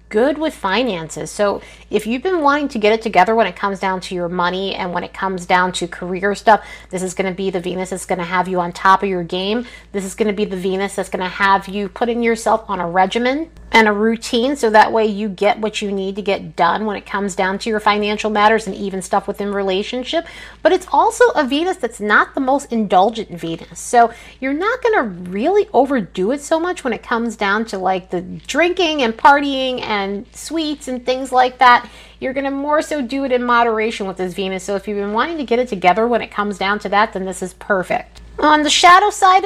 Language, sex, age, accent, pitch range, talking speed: English, female, 30-49, American, 195-265 Hz, 245 wpm